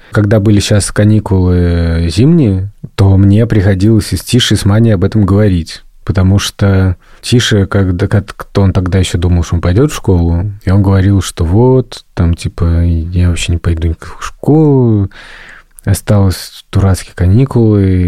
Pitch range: 90-110 Hz